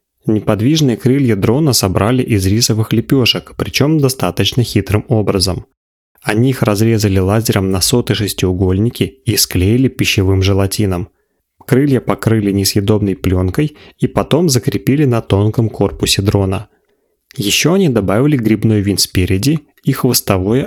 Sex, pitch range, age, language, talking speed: male, 100-130 Hz, 30-49, Russian, 120 wpm